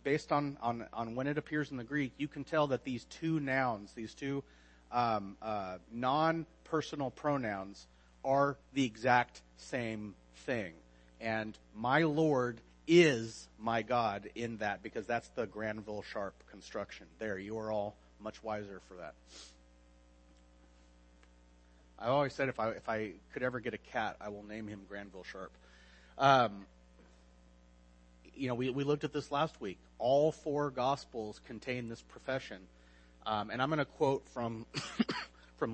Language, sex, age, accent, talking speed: English, male, 30-49, American, 155 wpm